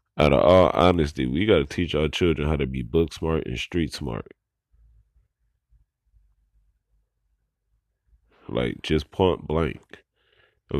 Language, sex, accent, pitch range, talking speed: English, male, American, 75-90 Hz, 130 wpm